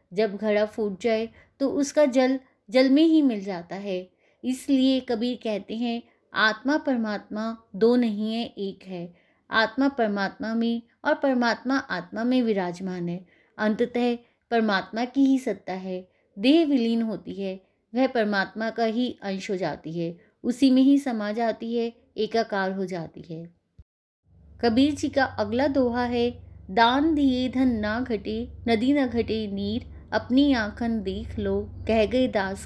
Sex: female